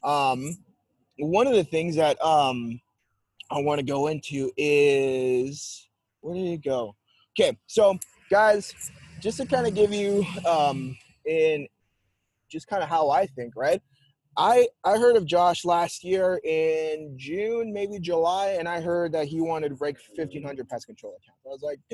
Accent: American